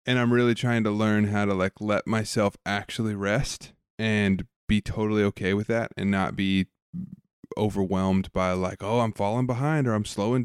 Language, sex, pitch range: English, male, 100-120 Hz